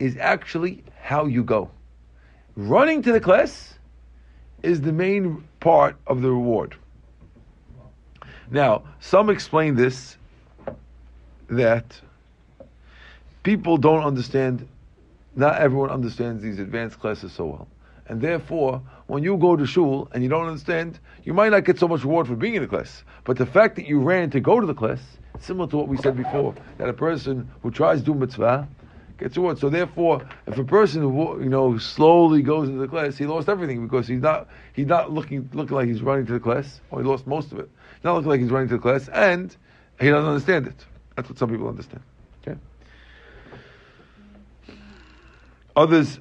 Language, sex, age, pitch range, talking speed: English, male, 50-69, 120-155 Hz, 180 wpm